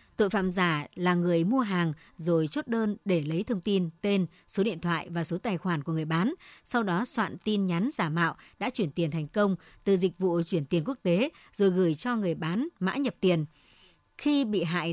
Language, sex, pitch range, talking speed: Vietnamese, male, 170-215 Hz, 220 wpm